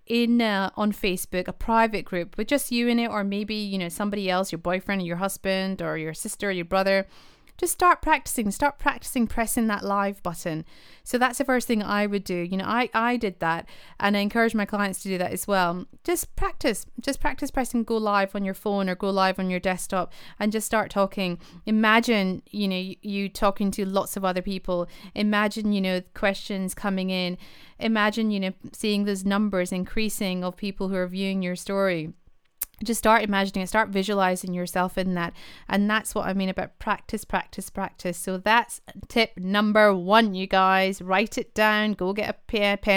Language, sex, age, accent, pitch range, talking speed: English, female, 30-49, British, 190-220 Hz, 200 wpm